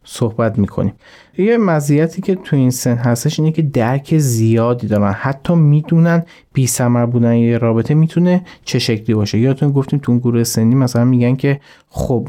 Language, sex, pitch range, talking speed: Persian, male, 115-150 Hz, 170 wpm